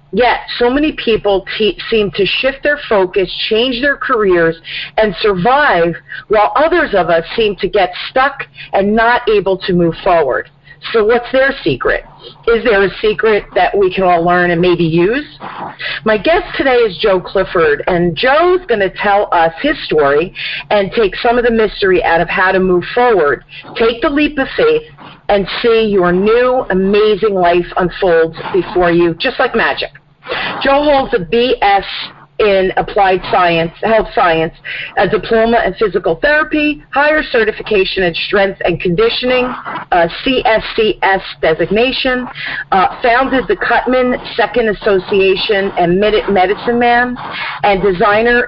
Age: 40-59